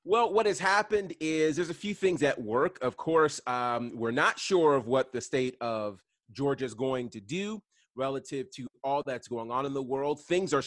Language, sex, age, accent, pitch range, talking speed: English, male, 30-49, American, 130-180 Hz, 215 wpm